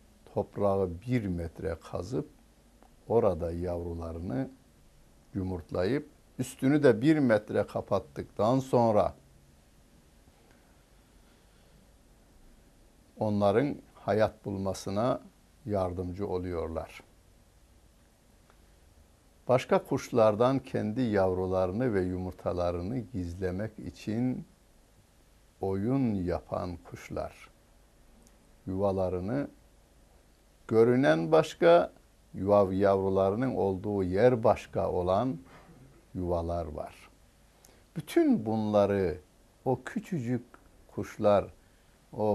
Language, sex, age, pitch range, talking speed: Turkish, male, 60-79, 90-115 Hz, 65 wpm